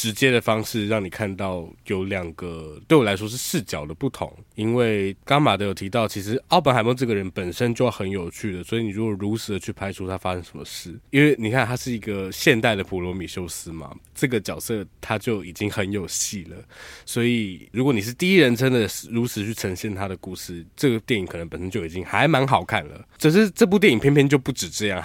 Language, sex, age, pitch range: Chinese, male, 20-39, 95-120 Hz